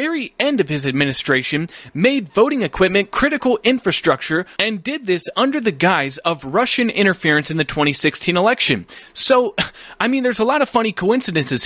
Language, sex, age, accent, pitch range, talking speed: English, male, 30-49, American, 165-225 Hz, 165 wpm